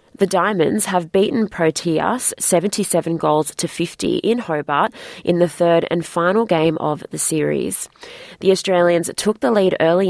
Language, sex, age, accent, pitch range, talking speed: English, female, 20-39, Australian, 160-185 Hz, 155 wpm